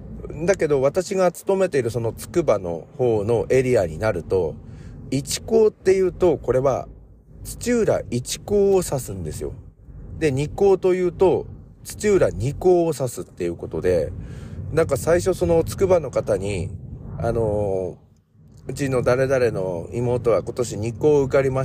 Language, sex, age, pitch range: Japanese, male, 40-59, 115-185 Hz